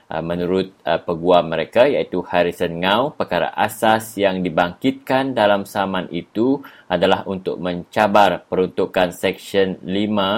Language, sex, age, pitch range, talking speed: English, male, 30-49, 90-105 Hz, 115 wpm